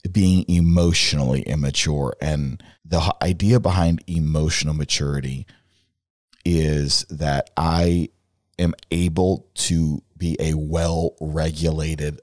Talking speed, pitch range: 95 wpm, 80-100 Hz